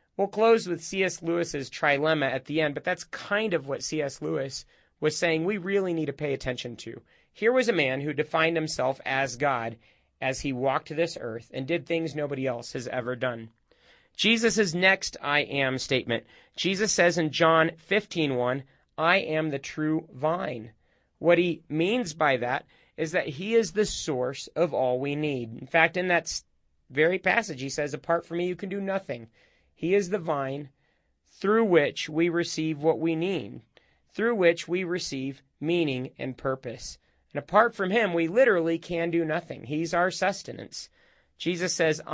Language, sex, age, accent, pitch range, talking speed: English, male, 30-49, American, 135-180 Hz, 180 wpm